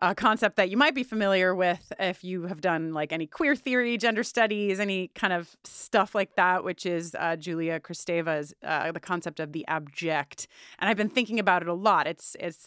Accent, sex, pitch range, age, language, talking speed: American, female, 160-210 Hz, 30-49, English, 215 wpm